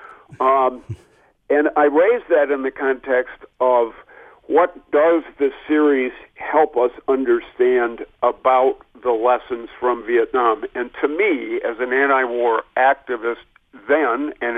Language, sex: English, male